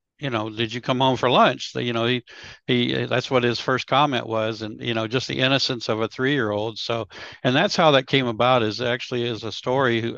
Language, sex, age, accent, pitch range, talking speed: English, male, 60-79, American, 110-130 Hz, 235 wpm